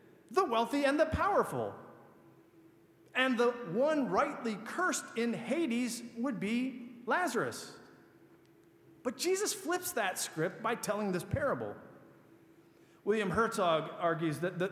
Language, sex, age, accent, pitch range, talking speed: English, male, 40-59, American, 180-255 Hz, 120 wpm